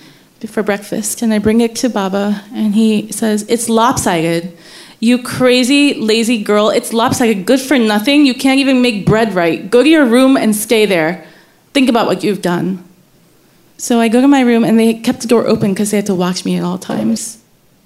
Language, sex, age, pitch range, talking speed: English, female, 20-39, 195-235 Hz, 205 wpm